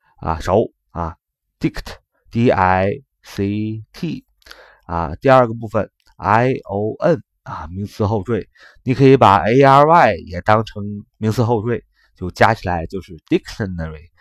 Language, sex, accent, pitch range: Chinese, male, native, 95-135 Hz